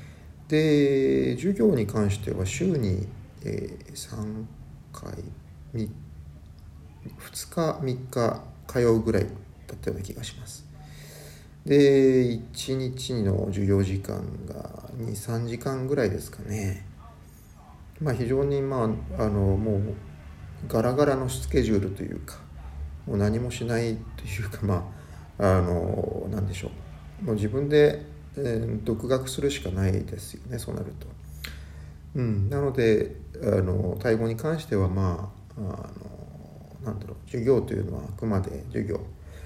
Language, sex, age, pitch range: Japanese, male, 40-59, 85-115 Hz